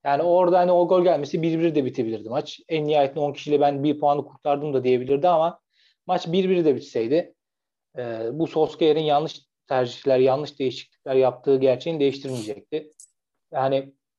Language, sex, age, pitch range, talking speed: Turkish, male, 40-59, 135-160 Hz, 150 wpm